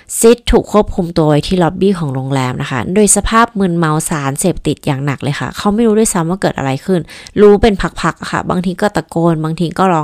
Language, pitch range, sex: Thai, 155-200 Hz, female